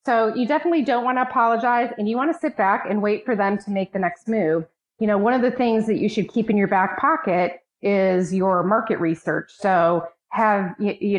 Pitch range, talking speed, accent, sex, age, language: 175-215 Hz, 230 wpm, American, female, 30-49, English